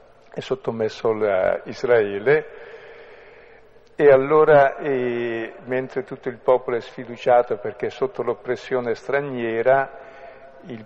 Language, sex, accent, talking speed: Italian, male, native, 100 wpm